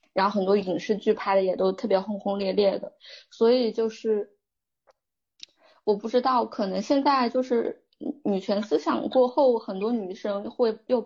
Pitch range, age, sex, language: 195-240 Hz, 20-39, female, Chinese